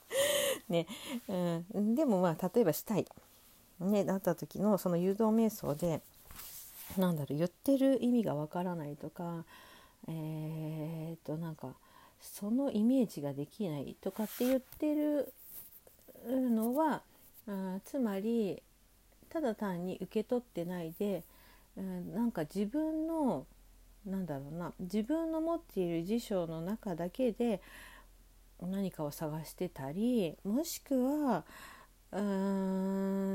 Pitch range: 170-235 Hz